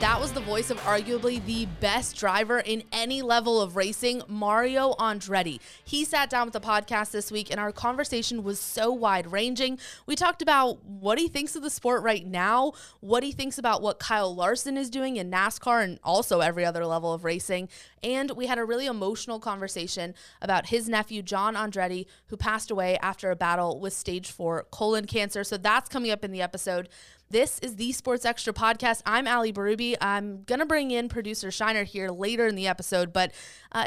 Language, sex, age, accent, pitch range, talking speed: English, female, 20-39, American, 195-245 Hz, 200 wpm